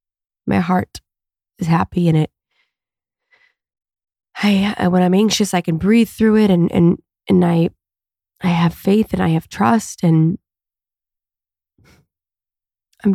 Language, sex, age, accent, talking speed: English, female, 20-39, American, 130 wpm